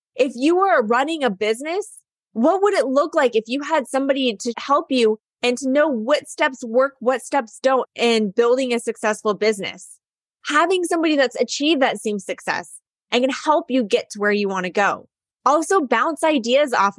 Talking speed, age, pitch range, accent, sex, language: 190 wpm, 20-39, 220-290 Hz, American, female, English